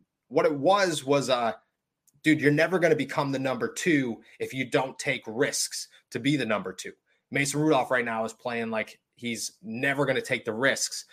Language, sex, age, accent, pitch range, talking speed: English, male, 30-49, American, 130-160 Hz, 205 wpm